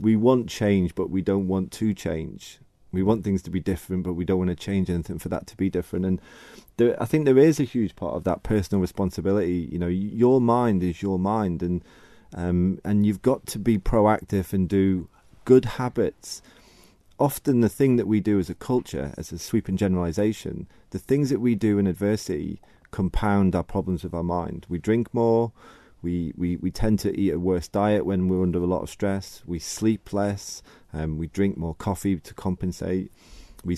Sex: male